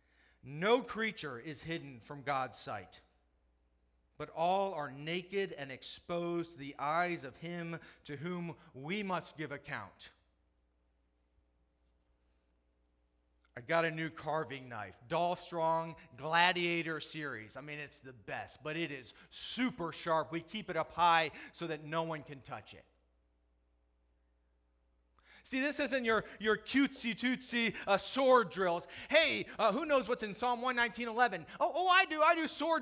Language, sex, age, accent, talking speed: English, male, 40-59, American, 150 wpm